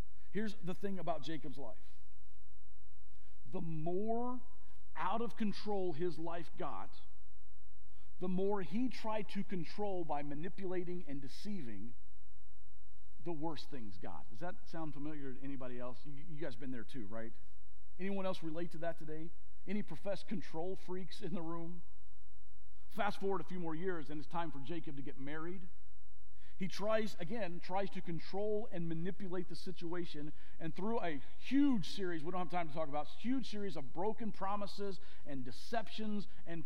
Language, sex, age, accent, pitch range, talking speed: English, male, 50-69, American, 140-215 Hz, 160 wpm